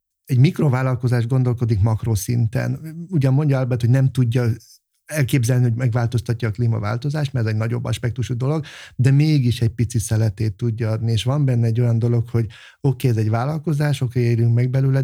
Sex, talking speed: male, 180 wpm